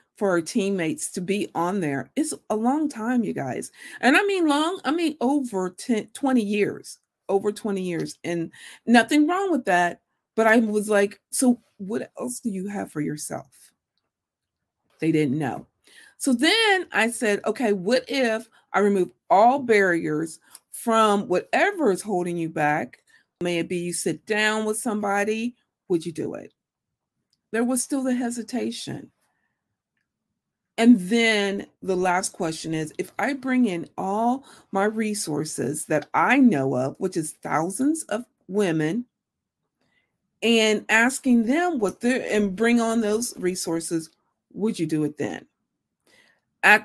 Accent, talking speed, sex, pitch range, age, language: American, 150 wpm, female, 180-240 Hz, 50-69, English